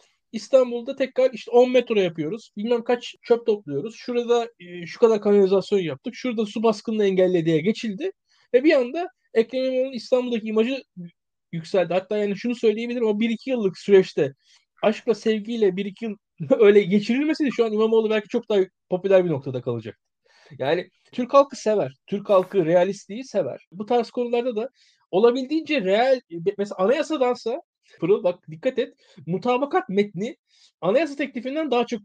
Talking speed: 150 wpm